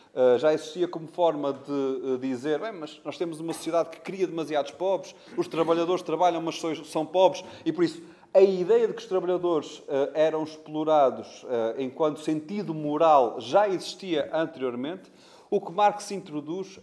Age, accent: 30-49, Portuguese